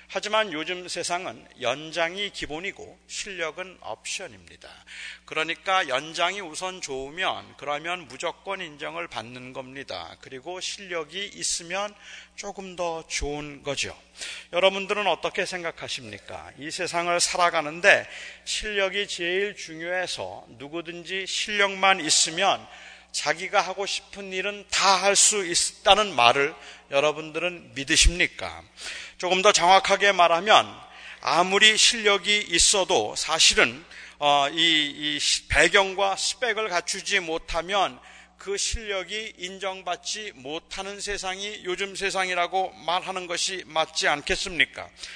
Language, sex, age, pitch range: Korean, male, 40-59, 160-200 Hz